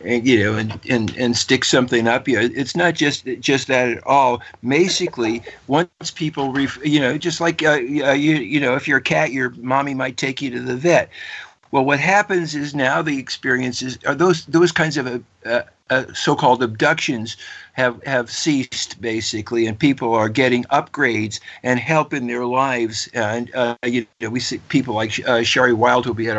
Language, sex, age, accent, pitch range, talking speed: English, male, 50-69, American, 125-155 Hz, 195 wpm